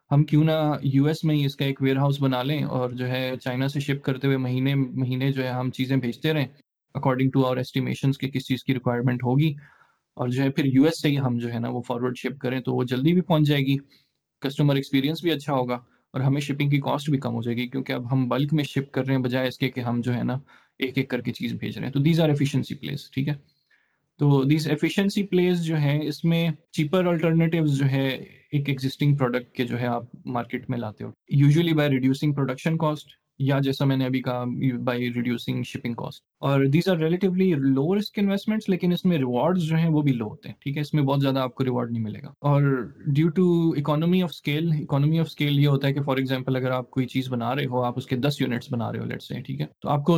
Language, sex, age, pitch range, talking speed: Urdu, male, 20-39, 130-150 Hz, 190 wpm